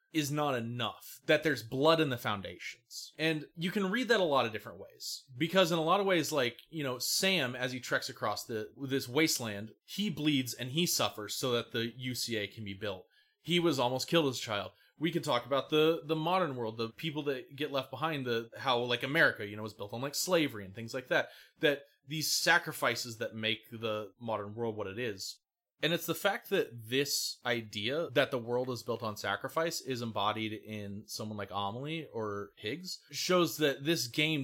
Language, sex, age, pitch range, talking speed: English, male, 30-49, 110-150 Hz, 210 wpm